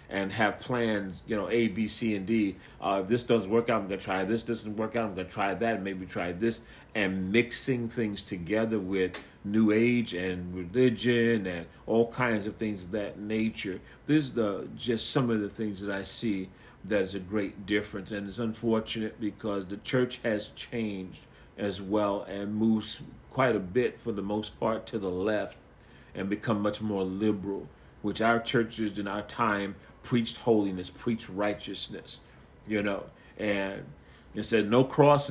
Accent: American